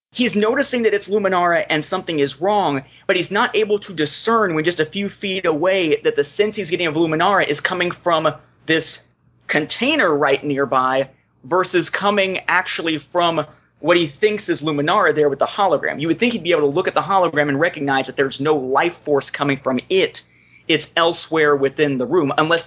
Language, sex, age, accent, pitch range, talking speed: English, male, 30-49, American, 145-195 Hz, 200 wpm